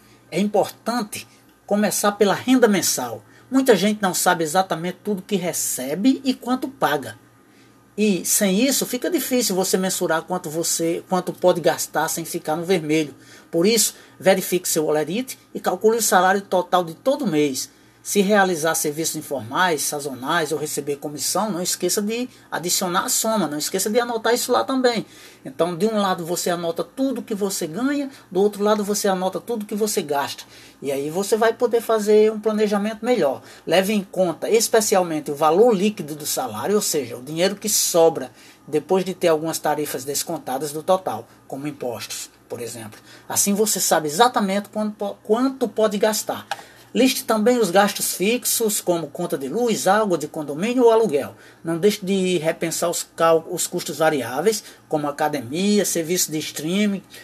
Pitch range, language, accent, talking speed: 160-215 Hz, Portuguese, Brazilian, 160 wpm